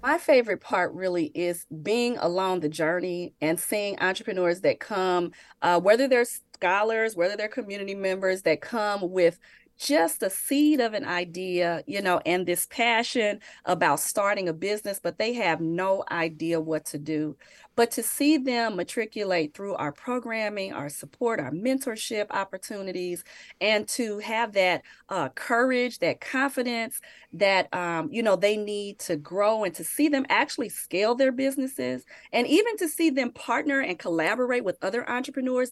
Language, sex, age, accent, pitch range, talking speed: English, female, 30-49, American, 170-240 Hz, 160 wpm